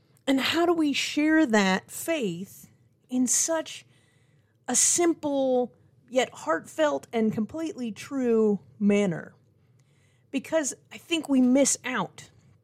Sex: female